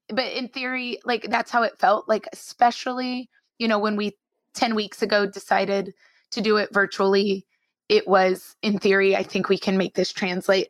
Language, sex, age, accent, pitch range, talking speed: English, female, 20-39, American, 190-210 Hz, 185 wpm